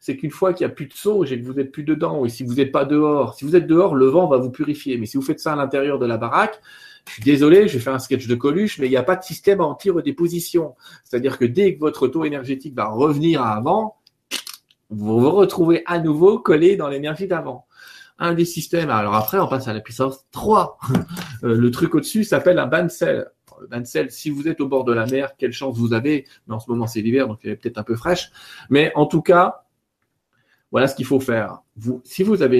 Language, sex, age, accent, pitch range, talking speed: French, male, 40-59, French, 120-160 Hz, 250 wpm